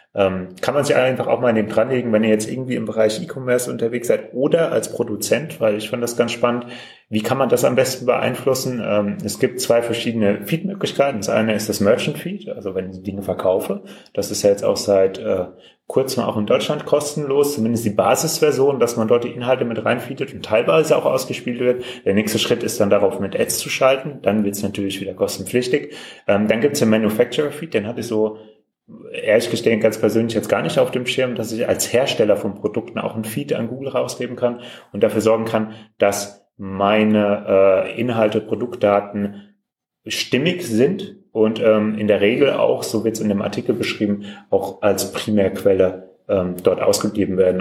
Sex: male